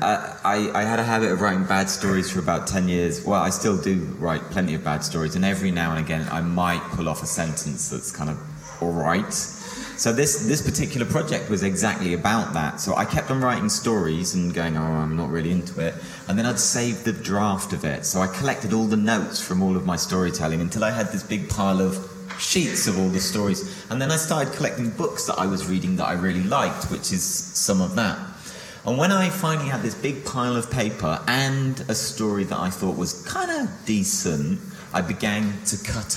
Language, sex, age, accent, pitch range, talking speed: English, male, 30-49, British, 95-125 Hz, 225 wpm